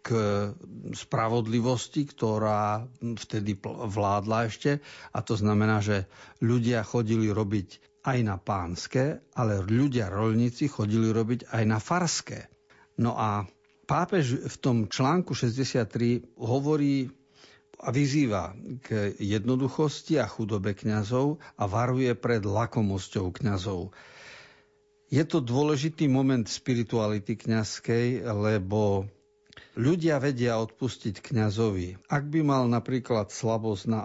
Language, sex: Slovak, male